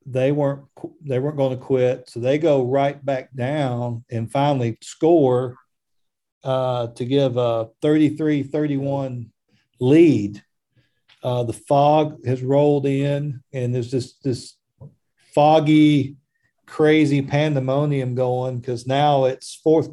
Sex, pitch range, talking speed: male, 125-145 Hz, 125 wpm